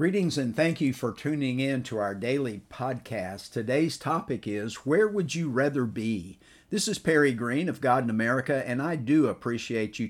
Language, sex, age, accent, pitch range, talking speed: English, male, 50-69, American, 115-155 Hz, 190 wpm